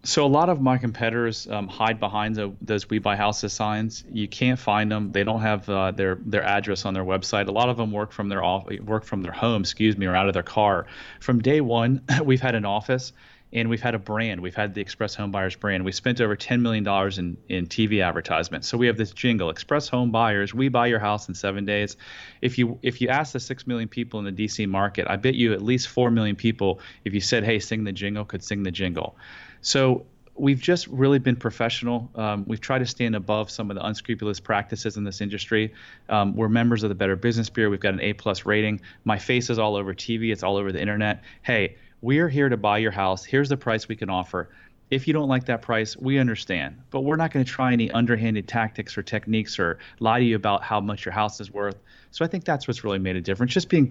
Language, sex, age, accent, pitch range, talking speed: English, male, 30-49, American, 100-120 Hz, 245 wpm